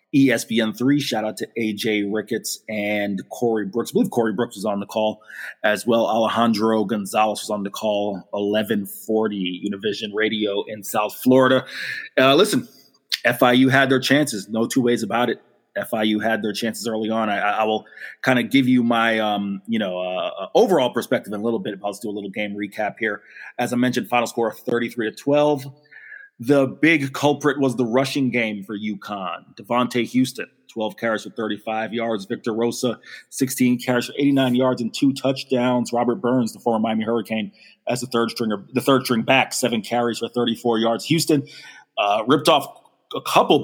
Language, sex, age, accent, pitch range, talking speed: English, male, 30-49, American, 110-130 Hz, 185 wpm